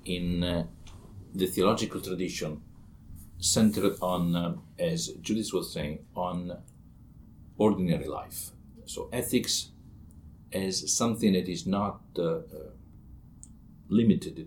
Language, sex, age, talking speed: English, male, 50-69, 105 wpm